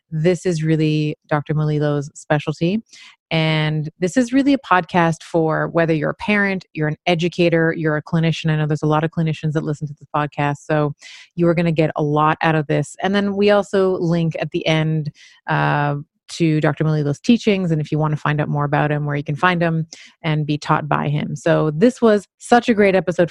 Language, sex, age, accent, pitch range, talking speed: English, female, 30-49, American, 150-175 Hz, 220 wpm